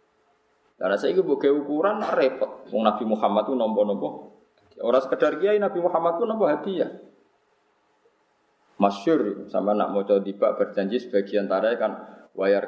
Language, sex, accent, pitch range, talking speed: Indonesian, male, native, 105-160 Hz, 140 wpm